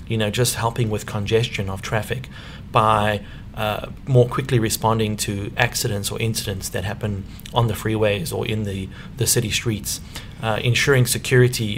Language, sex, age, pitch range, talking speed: English, male, 40-59, 105-120 Hz, 160 wpm